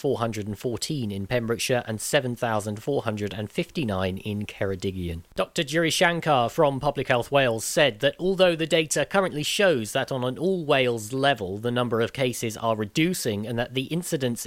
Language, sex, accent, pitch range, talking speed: English, male, British, 110-140 Hz, 150 wpm